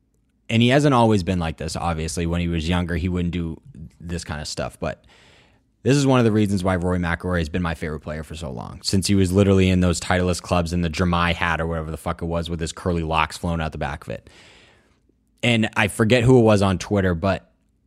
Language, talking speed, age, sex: English, 250 wpm, 20-39, male